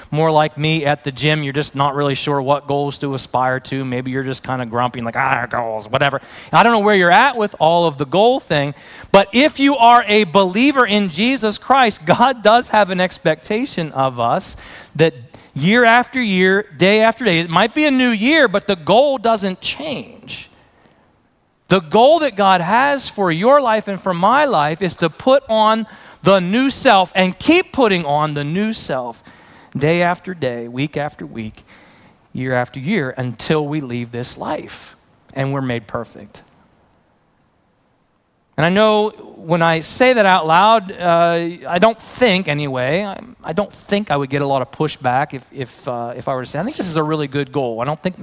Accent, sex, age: American, male, 30-49